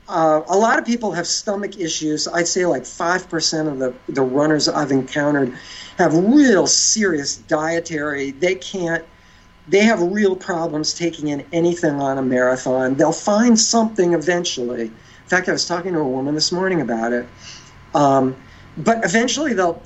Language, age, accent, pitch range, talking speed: English, 50-69, American, 140-200 Hz, 165 wpm